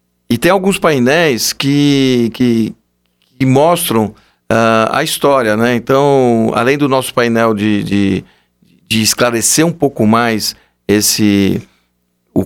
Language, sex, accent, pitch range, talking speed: Portuguese, male, Brazilian, 110-140 Hz, 105 wpm